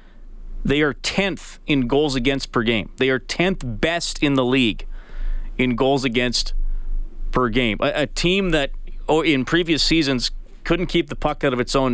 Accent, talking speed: American, 175 wpm